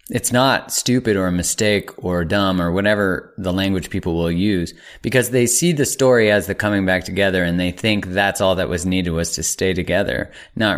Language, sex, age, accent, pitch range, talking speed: English, male, 30-49, American, 85-105 Hz, 210 wpm